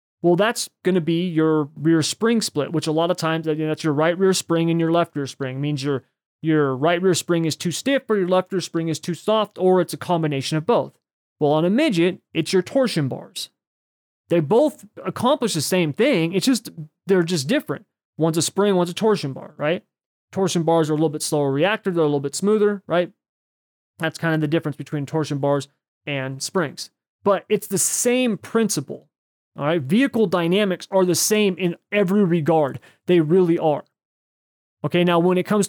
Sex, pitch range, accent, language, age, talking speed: male, 155-190 Hz, American, English, 30-49, 205 wpm